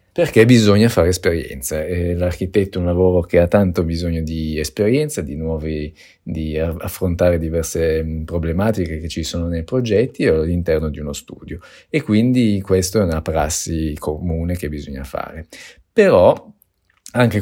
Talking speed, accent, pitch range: 145 wpm, native, 85-105 Hz